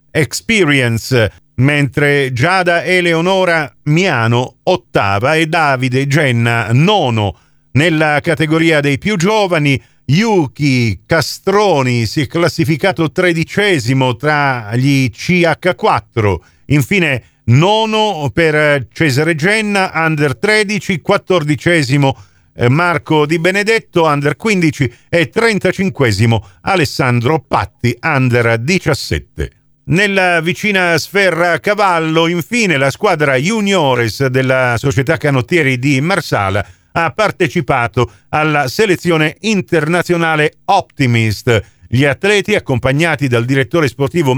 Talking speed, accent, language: 95 wpm, native, Italian